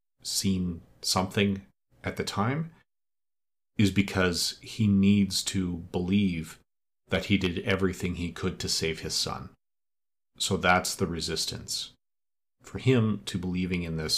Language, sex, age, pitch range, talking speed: English, male, 40-59, 90-105 Hz, 130 wpm